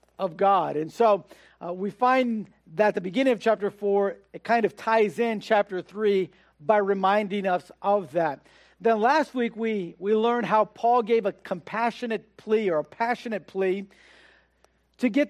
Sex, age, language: male, 50-69, English